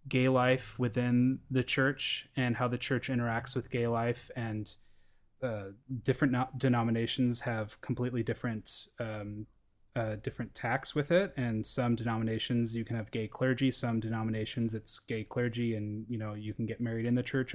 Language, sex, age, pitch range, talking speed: English, male, 20-39, 115-140 Hz, 170 wpm